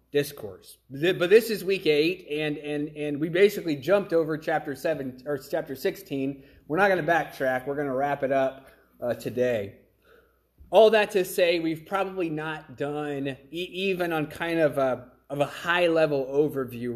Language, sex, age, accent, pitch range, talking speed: English, male, 30-49, American, 135-165 Hz, 175 wpm